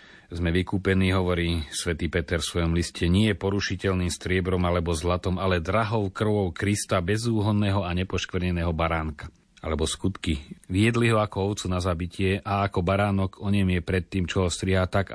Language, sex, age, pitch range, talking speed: Slovak, male, 40-59, 85-100 Hz, 165 wpm